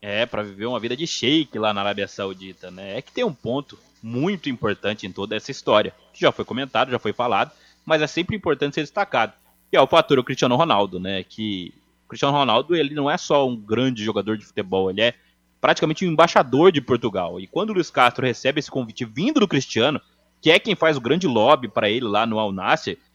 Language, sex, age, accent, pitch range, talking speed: Portuguese, male, 20-39, Brazilian, 110-150 Hz, 225 wpm